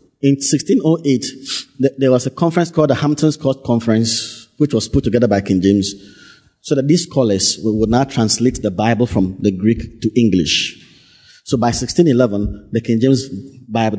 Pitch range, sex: 110-150 Hz, male